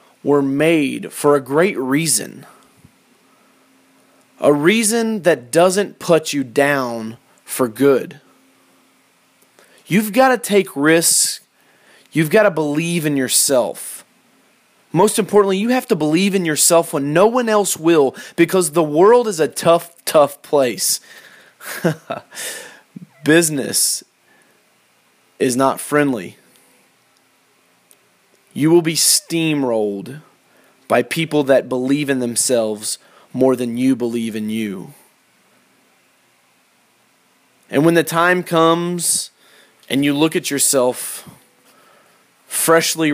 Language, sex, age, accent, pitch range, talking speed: English, male, 30-49, American, 130-165 Hz, 110 wpm